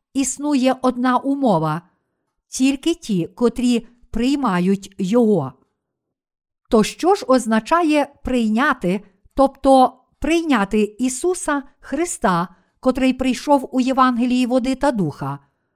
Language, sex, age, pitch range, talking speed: Ukrainian, female, 50-69, 210-275 Hz, 95 wpm